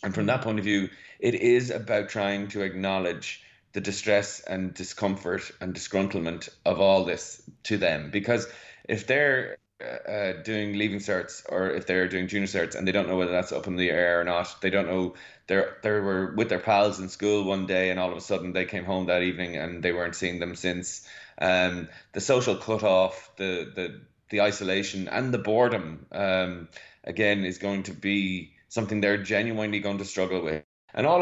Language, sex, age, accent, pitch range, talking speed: English, male, 20-39, Irish, 95-105 Hz, 200 wpm